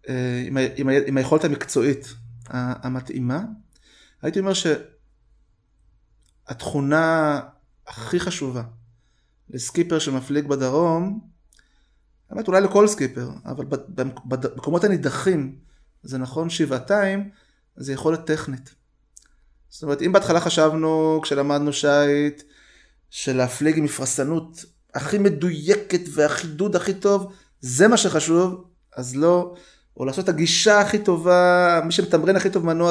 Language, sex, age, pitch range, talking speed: Hebrew, male, 30-49, 135-180 Hz, 100 wpm